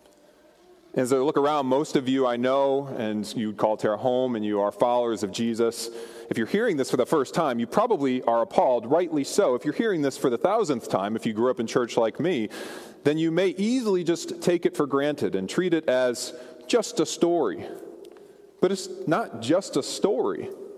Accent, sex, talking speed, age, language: American, male, 210 wpm, 30-49, English